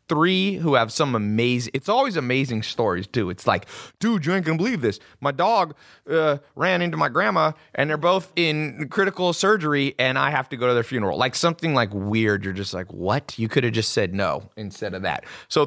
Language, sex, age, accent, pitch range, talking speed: English, male, 30-49, American, 120-165 Hz, 215 wpm